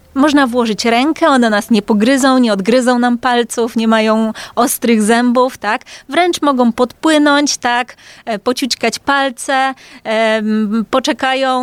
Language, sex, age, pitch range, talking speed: Polish, female, 20-39, 220-260 Hz, 120 wpm